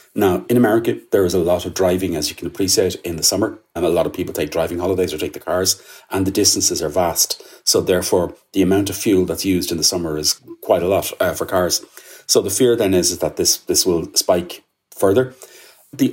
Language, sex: English, male